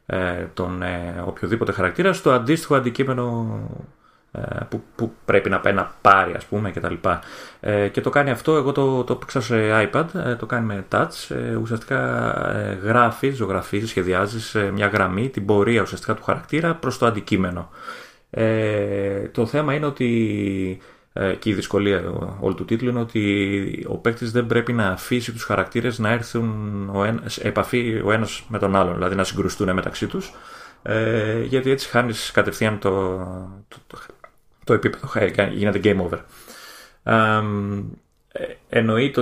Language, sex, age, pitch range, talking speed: Greek, male, 30-49, 95-120 Hz, 145 wpm